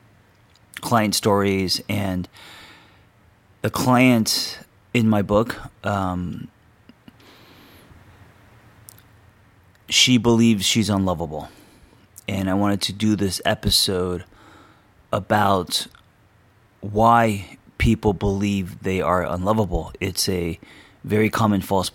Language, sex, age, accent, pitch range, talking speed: English, male, 30-49, American, 90-105 Hz, 85 wpm